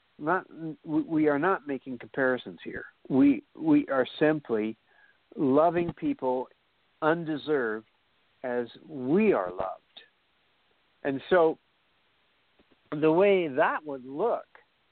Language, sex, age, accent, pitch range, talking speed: English, male, 60-79, American, 120-155 Hz, 100 wpm